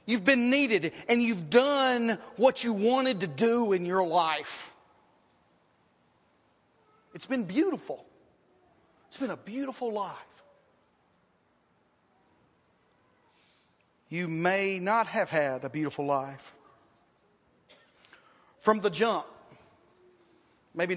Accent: American